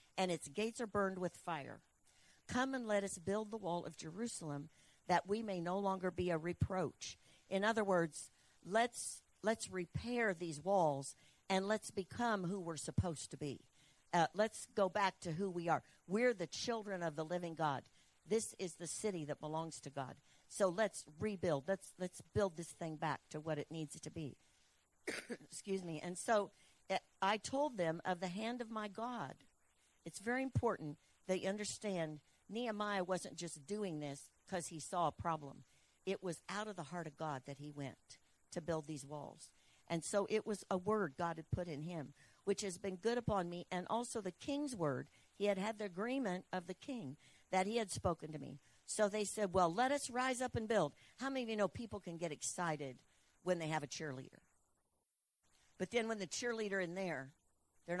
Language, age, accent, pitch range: English, 60-79, American, 155-210 Hz